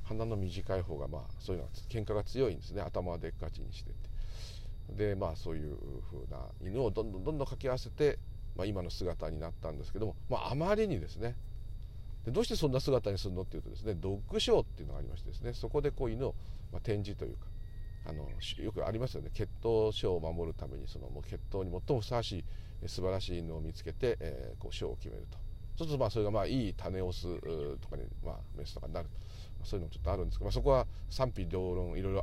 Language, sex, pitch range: Japanese, male, 80-105 Hz